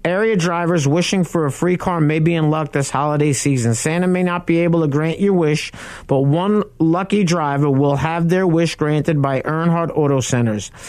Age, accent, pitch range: 50-69, American, 145-180 Hz